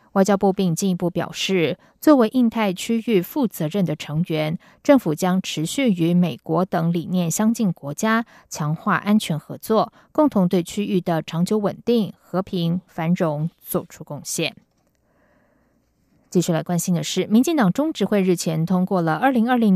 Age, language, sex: 20-39, Chinese, female